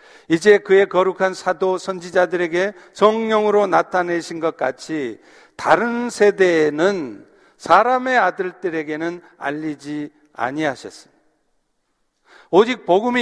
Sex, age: male, 50-69